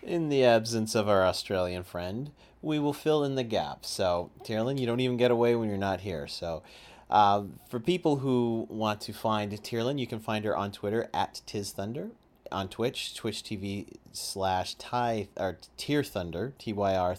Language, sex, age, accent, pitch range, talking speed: English, male, 30-49, American, 95-115 Hz, 170 wpm